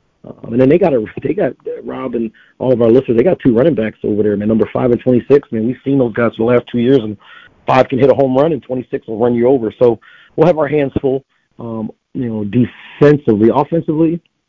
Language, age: English, 40-59